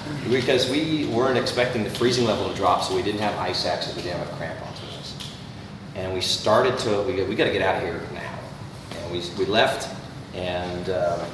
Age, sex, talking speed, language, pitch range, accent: 30-49, male, 205 wpm, English, 95-125 Hz, American